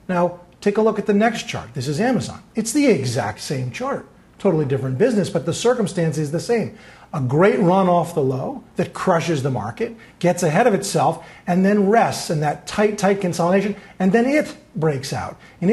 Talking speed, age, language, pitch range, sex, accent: 200 wpm, 40-59, English, 155-215 Hz, male, American